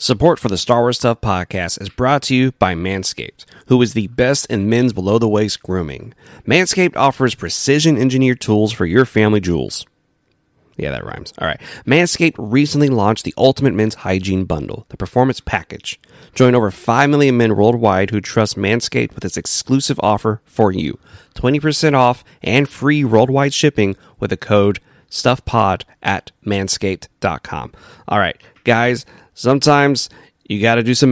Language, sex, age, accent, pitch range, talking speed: English, male, 30-49, American, 100-130 Hz, 155 wpm